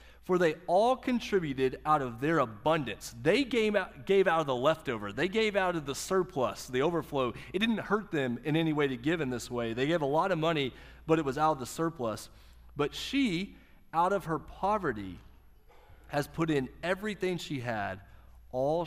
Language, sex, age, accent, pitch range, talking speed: English, male, 30-49, American, 110-175 Hz, 195 wpm